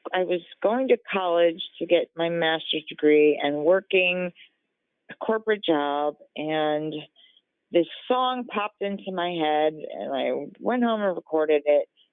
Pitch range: 165-215 Hz